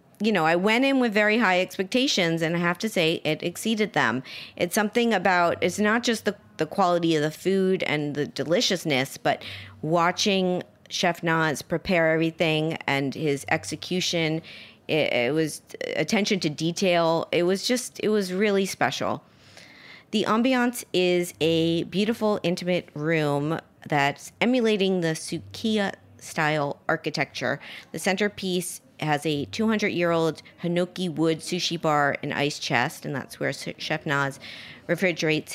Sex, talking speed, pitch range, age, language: female, 145 wpm, 155-195 Hz, 30-49, English